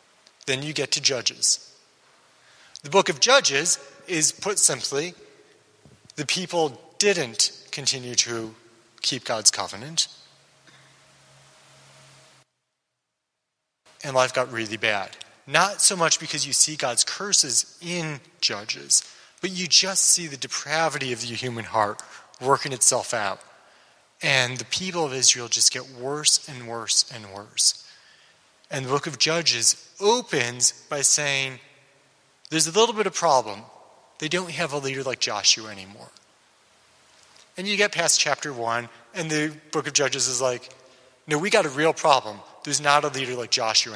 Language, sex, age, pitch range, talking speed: English, male, 30-49, 125-165 Hz, 145 wpm